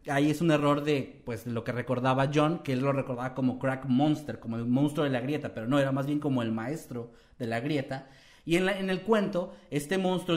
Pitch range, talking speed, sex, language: 125-155 Hz, 245 wpm, male, Spanish